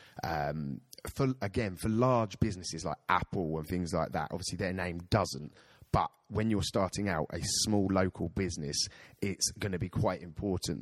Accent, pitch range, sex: British, 80-95 Hz, male